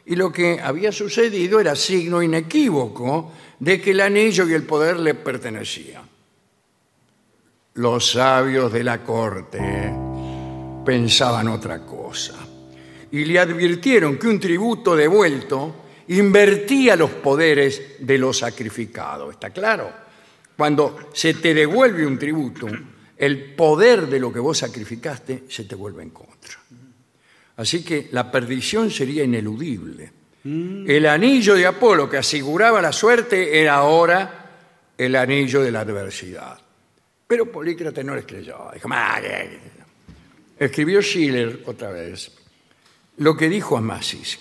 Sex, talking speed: male, 125 wpm